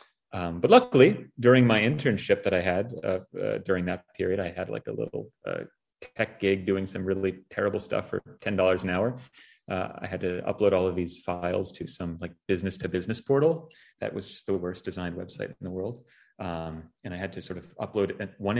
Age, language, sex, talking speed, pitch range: 30-49, English, male, 215 wpm, 90-110 Hz